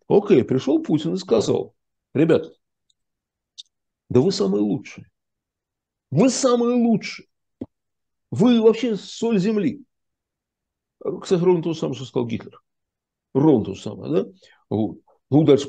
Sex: male